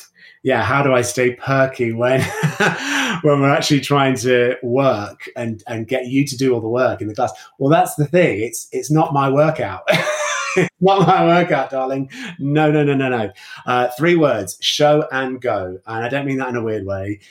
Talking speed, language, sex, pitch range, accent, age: 205 wpm, English, male, 105-150 Hz, British, 30-49